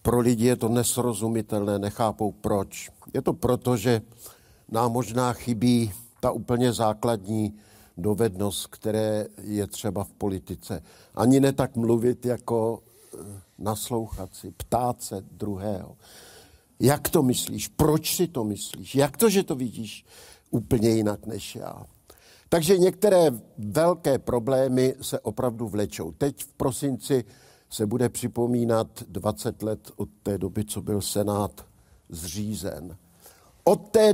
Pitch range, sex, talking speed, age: 105-130 Hz, male, 130 wpm, 60-79